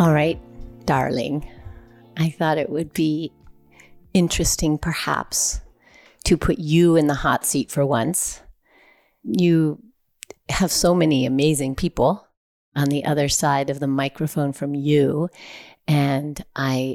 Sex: female